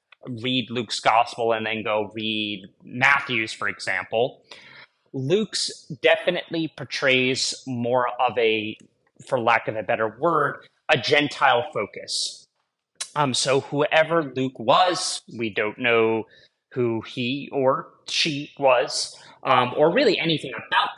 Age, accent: 30-49, American